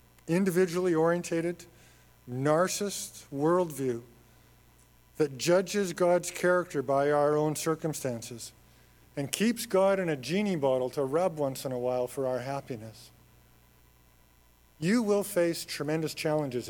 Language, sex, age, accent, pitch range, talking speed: English, male, 50-69, American, 125-185 Hz, 115 wpm